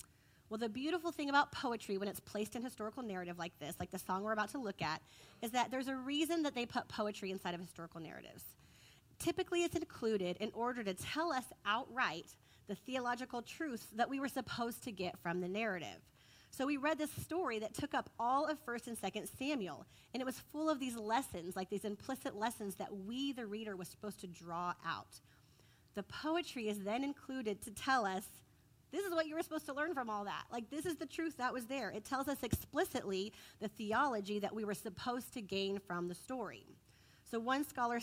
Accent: American